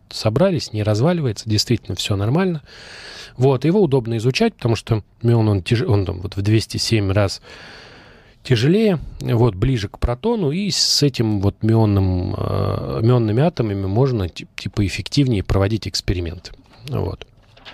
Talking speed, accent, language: 130 wpm, native, Russian